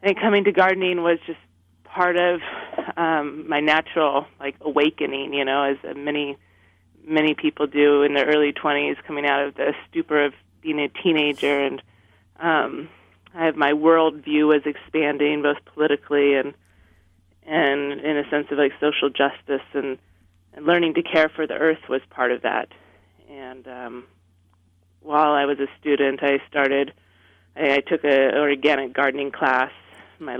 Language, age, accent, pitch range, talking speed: English, 30-49, American, 130-160 Hz, 160 wpm